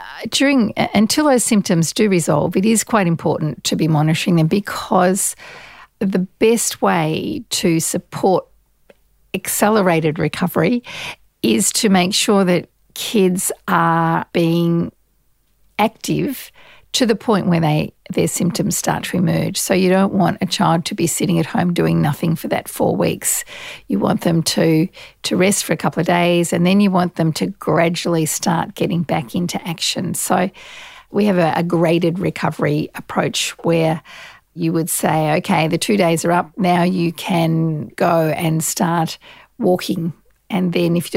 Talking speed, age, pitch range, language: 160 wpm, 50-69, 165-205 Hz, English